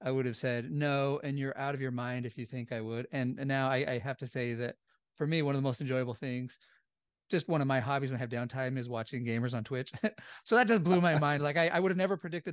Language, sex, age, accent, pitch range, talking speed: English, male, 30-49, American, 130-180 Hz, 285 wpm